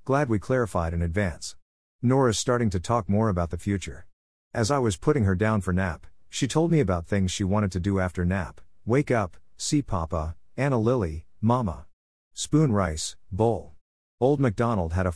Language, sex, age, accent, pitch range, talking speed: English, male, 50-69, American, 90-115 Hz, 180 wpm